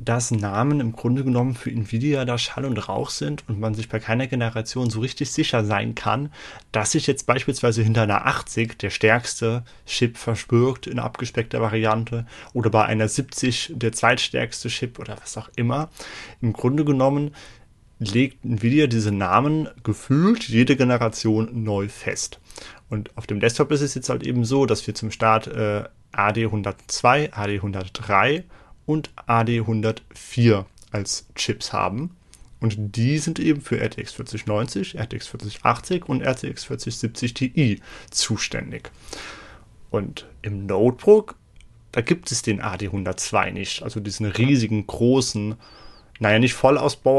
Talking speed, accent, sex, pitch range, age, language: 140 wpm, German, male, 110-130 Hz, 30-49, German